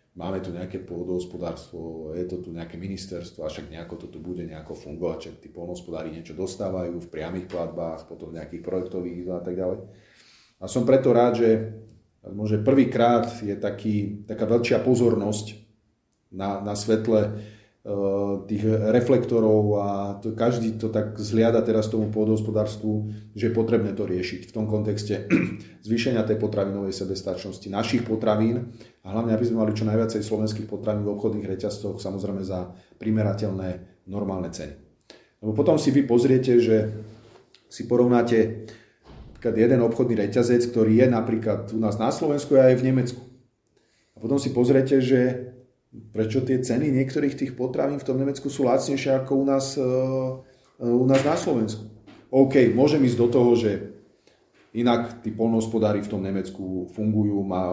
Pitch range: 100-120 Hz